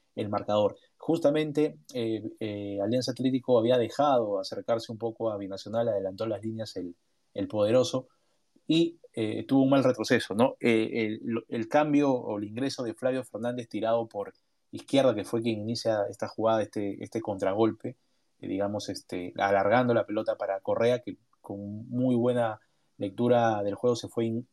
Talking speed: 165 wpm